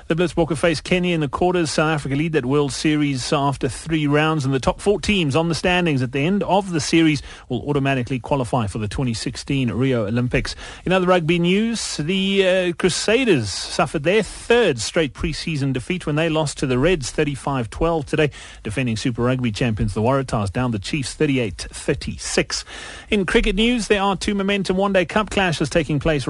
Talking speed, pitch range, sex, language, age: 185 wpm, 130-175 Hz, male, English, 30-49